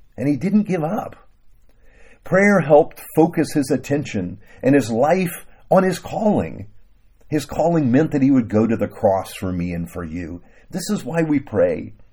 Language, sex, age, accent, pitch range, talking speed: English, male, 50-69, American, 100-150 Hz, 180 wpm